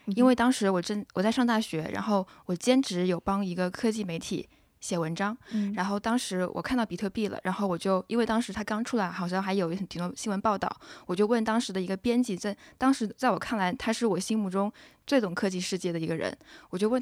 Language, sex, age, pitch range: Chinese, female, 20-39, 190-235 Hz